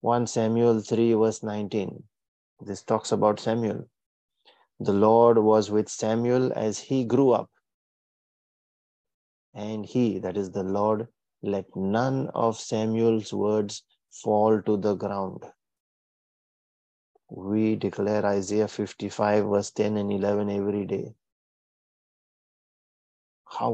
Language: English